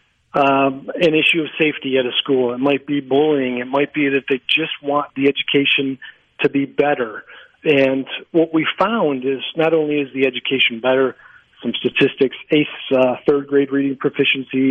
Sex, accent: male, American